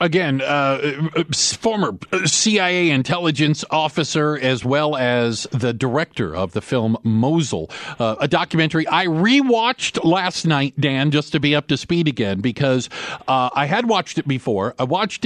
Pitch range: 135-180 Hz